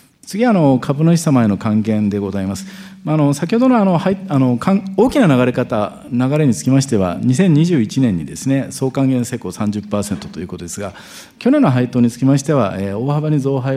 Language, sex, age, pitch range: Japanese, male, 50-69, 110-160 Hz